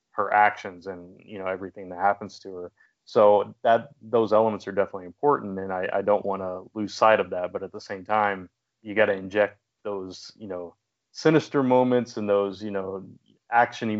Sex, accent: male, American